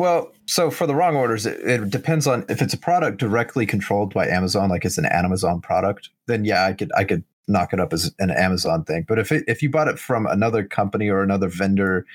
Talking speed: 240 wpm